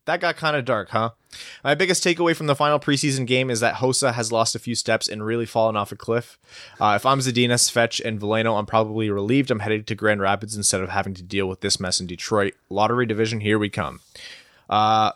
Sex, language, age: male, English, 20-39